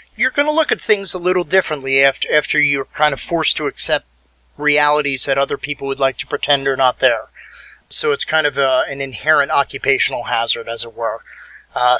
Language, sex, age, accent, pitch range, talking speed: English, male, 30-49, American, 135-160 Hz, 200 wpm